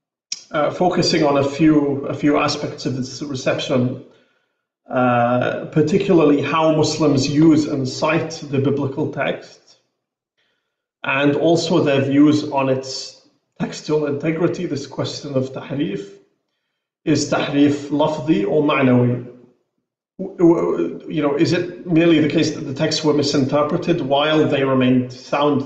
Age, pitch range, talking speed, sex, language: 40-59, 130-150 Hz, 125 wpm, male, English